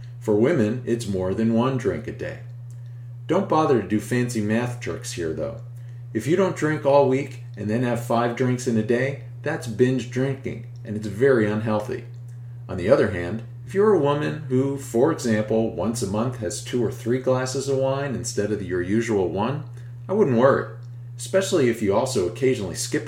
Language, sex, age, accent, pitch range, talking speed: English, male, 40-59, American, 115-130 Hz, 195 wpm